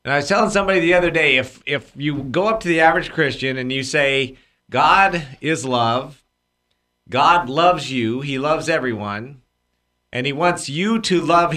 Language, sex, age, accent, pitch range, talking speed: English, male, 40-59, American, 130-180 Hz, 180 wpm